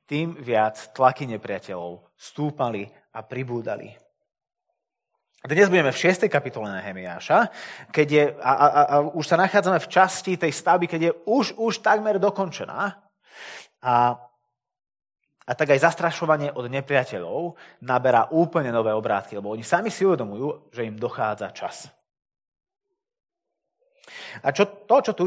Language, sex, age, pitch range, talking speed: Slovak, male, 30-49, 120-190 Hz, 140 wpm